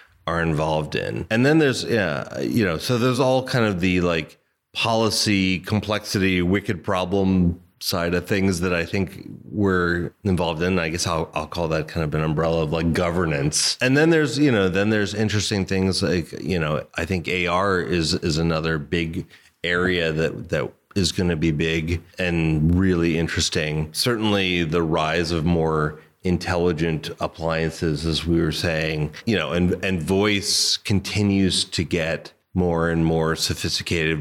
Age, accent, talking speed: 30-49, American, 165 wpm